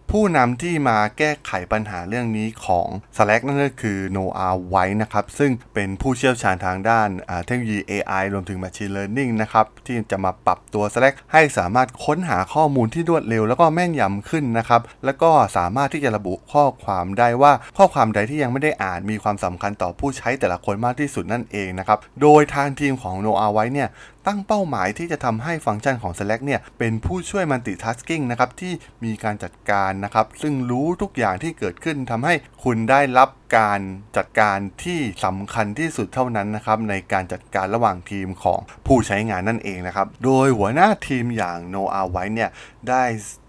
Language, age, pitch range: Thai, 20-39, 100-135 Hz